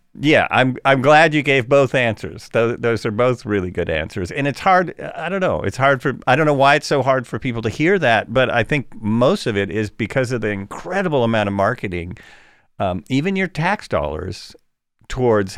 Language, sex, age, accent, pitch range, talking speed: English, male, 50-69, American, 95-125 Hz, 215 wpm